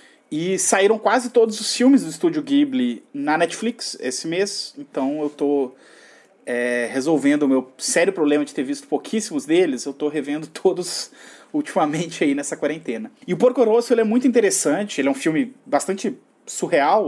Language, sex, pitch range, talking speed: Portuguese, male, 155-255 Hz, 170 wpm